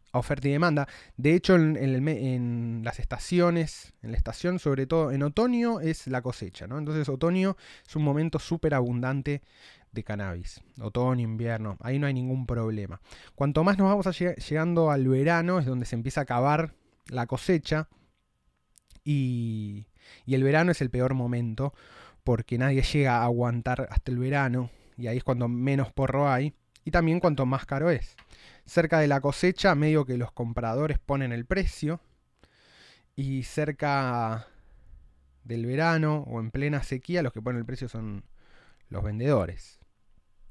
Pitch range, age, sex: 120-150 Hz, 20-39, male